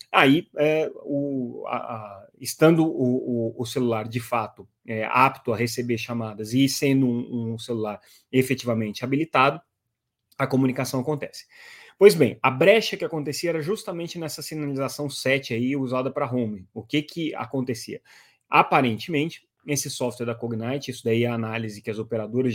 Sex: male